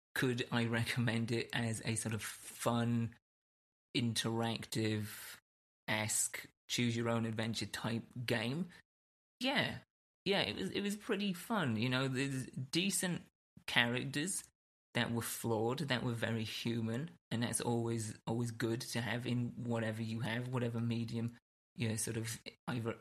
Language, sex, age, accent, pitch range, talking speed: English, male, 30-49, British, 115-130 Hz, 130 wpm